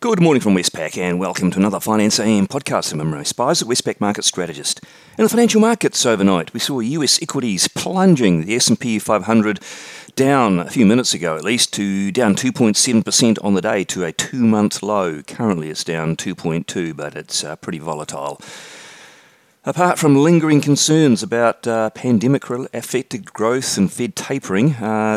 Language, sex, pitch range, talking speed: English, male, 85-125 Hz, 165 wpm